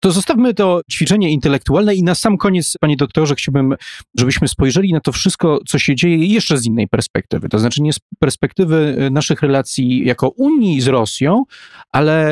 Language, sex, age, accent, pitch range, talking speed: Polish, male, 30-49, native, 120-165 Hz, 175 wpm